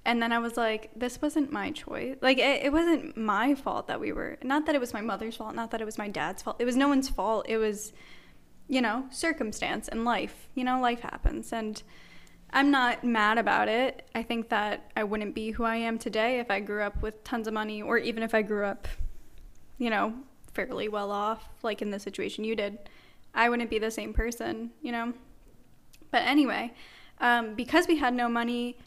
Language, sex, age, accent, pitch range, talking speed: English, female, 10-29, American, 215-245 Hz, 220 wpm